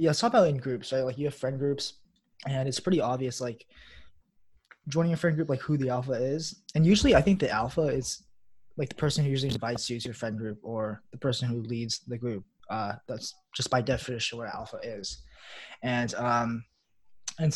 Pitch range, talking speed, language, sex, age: 120-145 Hz, 210 wpm, English, male, 20-39